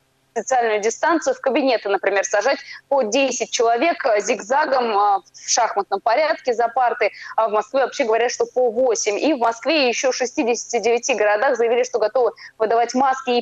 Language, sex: Russian, female